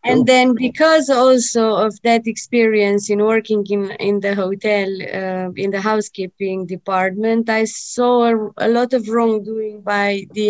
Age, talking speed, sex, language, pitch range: 20-39, 155 wpm, female, English, 205-240 Hz